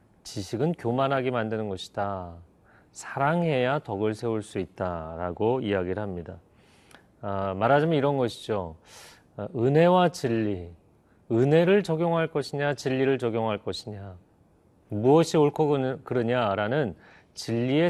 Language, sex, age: Korean, male, 40-59